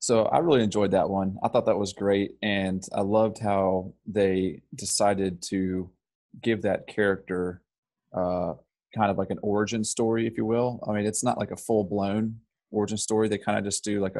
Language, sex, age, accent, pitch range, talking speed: English, male, 20-39, American, 95-105 Hz, 195 wpm